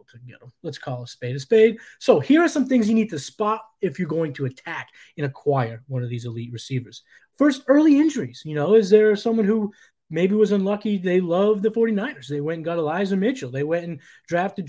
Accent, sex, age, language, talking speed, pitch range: American, male, 20-39, English, 215 wpm, 155-230 Hz